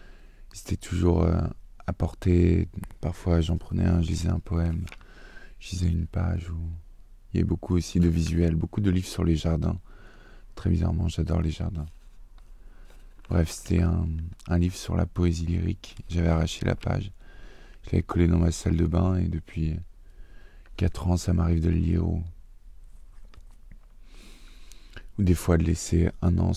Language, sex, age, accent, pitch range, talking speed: French, male, 20-39, French, 85-95 Hz, 165 wpm